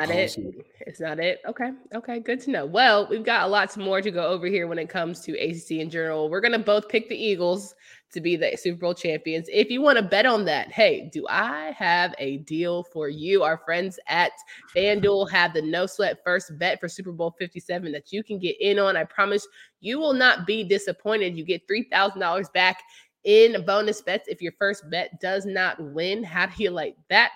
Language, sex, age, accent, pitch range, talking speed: English, female, 20-39, American, 175-215 Hz, 225 wpm